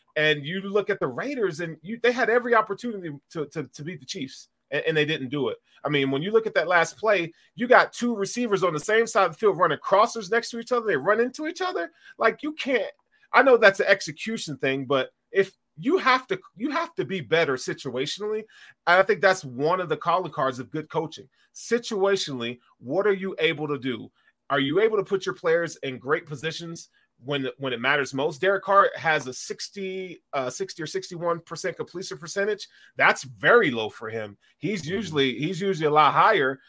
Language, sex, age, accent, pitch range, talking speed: English, male, 30-49, American, 145-205 Hz, 210 wpm